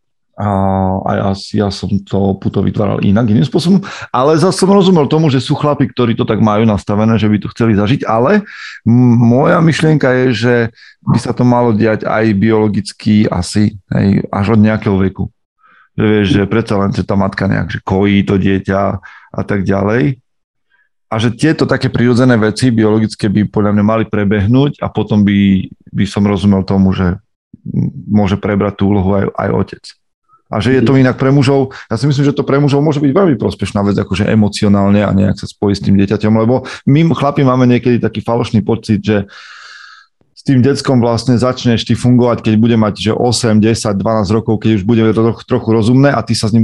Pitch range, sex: 100-125 Hz, male